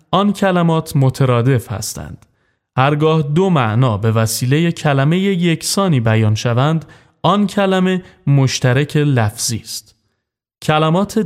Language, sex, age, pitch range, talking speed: Persian, male, 30-49, 115-160 Hz, 100 wpm